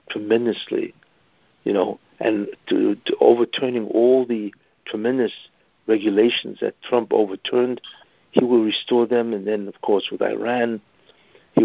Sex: male